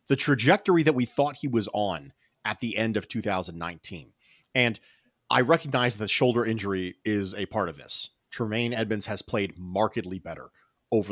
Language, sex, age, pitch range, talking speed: English, male, 30-49, 110-170 Hz, 165 wpm